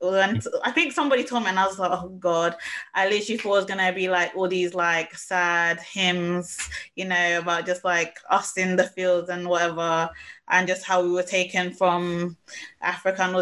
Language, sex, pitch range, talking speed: English, female, 175-205 Hz, 195 wpm